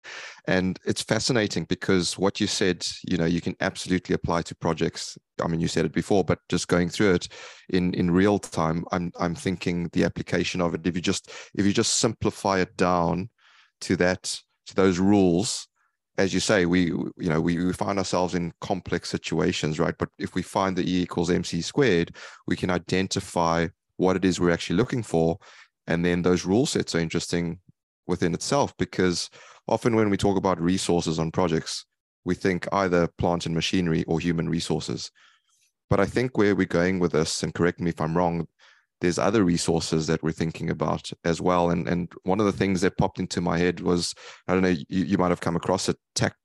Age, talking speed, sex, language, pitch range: 20-39, 205 wpm, male, English, 85-95 Hz